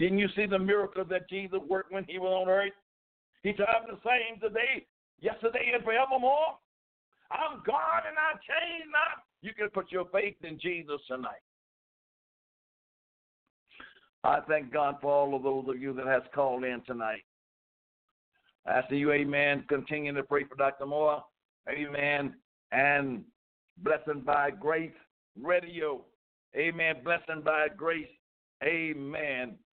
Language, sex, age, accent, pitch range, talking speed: English, male, 60-79, American, 150-205 Hz, 140 wpm